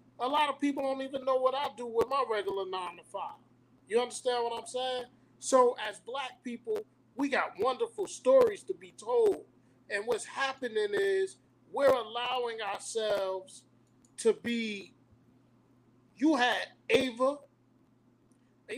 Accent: American